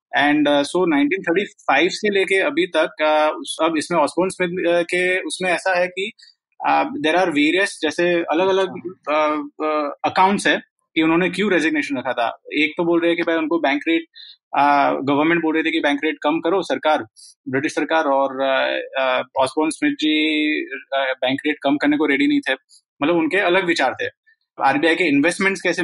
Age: 20-39